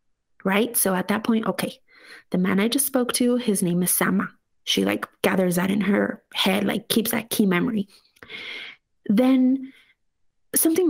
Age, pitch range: 30-49, 190-235 Hz